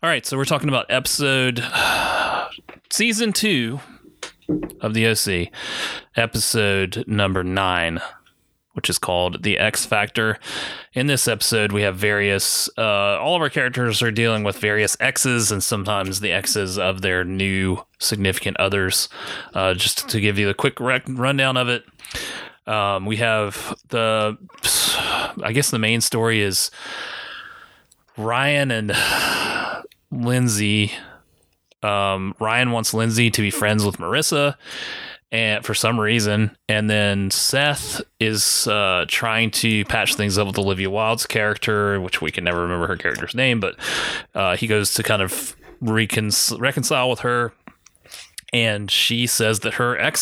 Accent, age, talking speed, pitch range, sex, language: American, 30-49, 145 wpm, 100-120 Hz, male, English